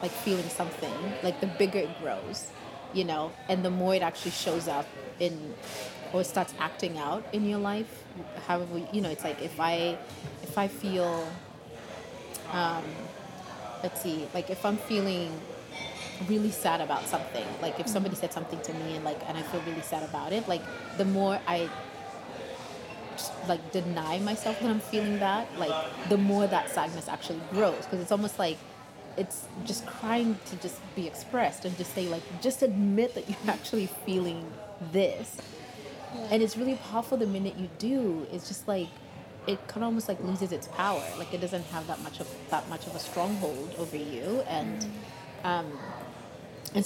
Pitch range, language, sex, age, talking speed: 170-205 Hz, English, female, 30-49, 175 wpm